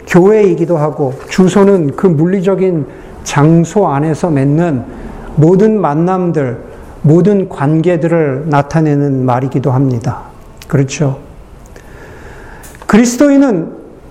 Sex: male